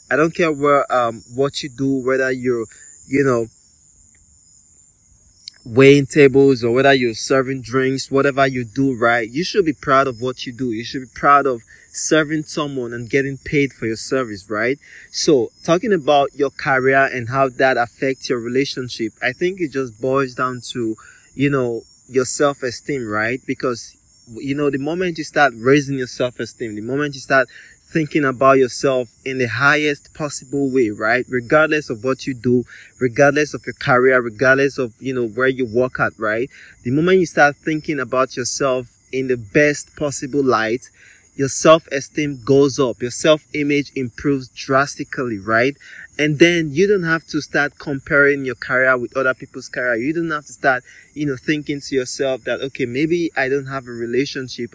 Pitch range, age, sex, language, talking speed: 125-145 Hz, 20-39, male, English, 180 wpm